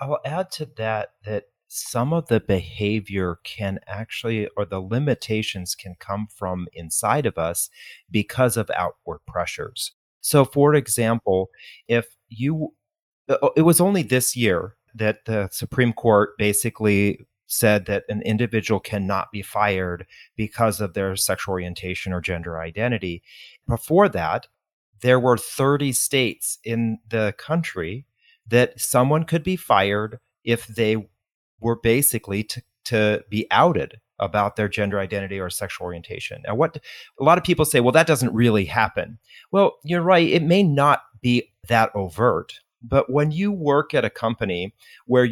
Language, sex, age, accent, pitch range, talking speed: English, male, 40-59, American, 100-125 Hz, 150 wpm